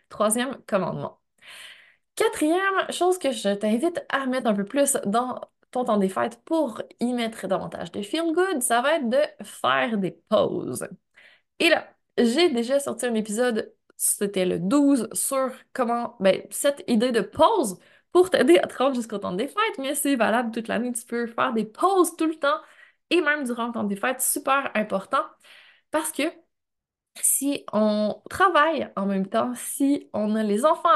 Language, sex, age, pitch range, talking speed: French, female, 20-39, 220-295 Hz, 180 wpm